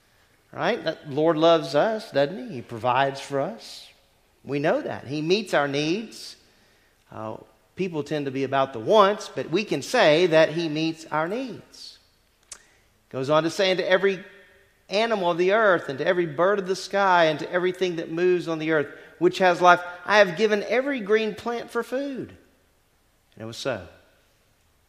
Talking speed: 185 wpm